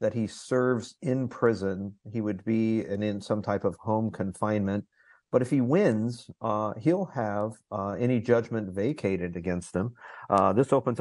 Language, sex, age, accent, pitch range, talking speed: English, male, 50-69, American, 105-130 Hz, 170 wpm